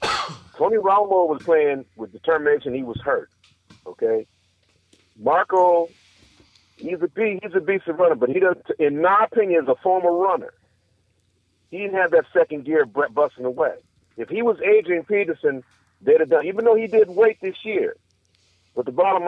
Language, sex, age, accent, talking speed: English, male, 40-59, American, 175 wpm